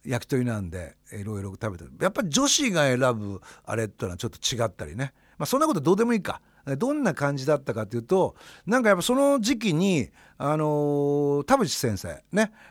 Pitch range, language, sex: 110-165 Hz, Japanese, male